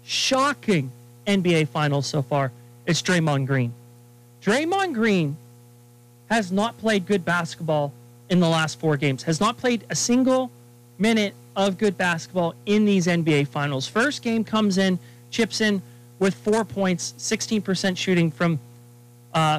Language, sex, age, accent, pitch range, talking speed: English, male, 30-49, American, 125-205 Hz, 140 wpm